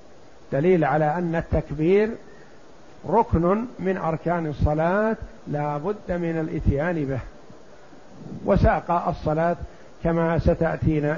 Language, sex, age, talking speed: Arabic, male, 60-79, 90 wpm